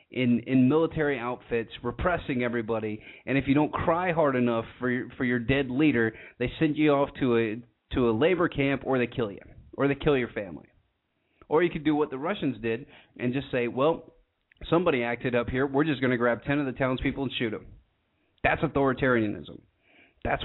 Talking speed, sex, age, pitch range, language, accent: 195 wpm, male, 30-49, 115-145 Hz, English, American